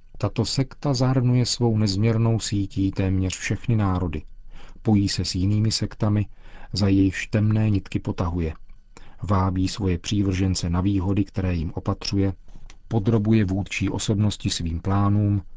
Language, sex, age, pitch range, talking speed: Czech, male, 40-59, 95-110 Hz, 125 wpm